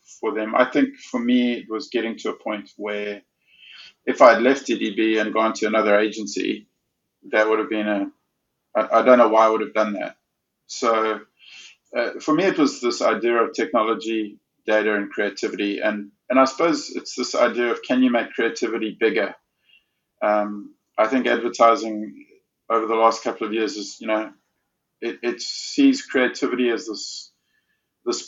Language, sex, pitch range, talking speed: English, male, 110-125 Hz, 175 wpm